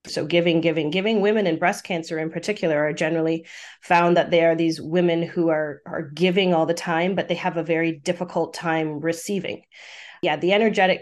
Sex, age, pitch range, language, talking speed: female, 30-49, 165-185 Hz, English, 195 wpm